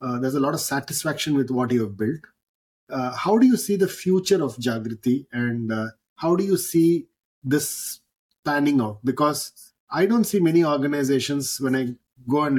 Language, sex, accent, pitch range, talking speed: English, male, Indian, 130-165 Hz, 185 wpm